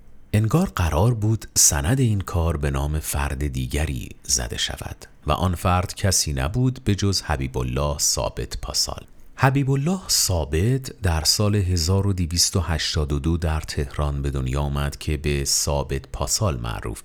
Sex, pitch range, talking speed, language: male, 70-95 Hz, 135 wpm, Persian